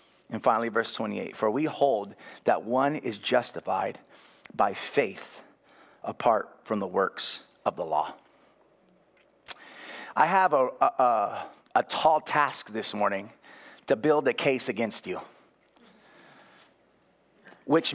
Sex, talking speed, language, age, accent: male, 120 wpm, English, 30-49, American